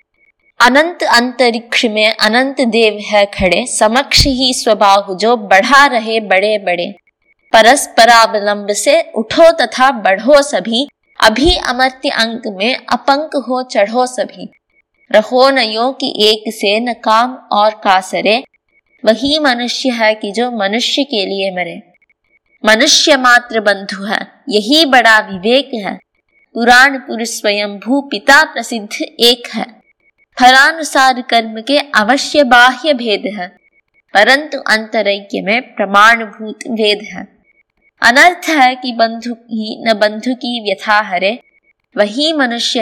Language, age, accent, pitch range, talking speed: Hindi, 20-39, native, 215-265 Hz, 120 wpm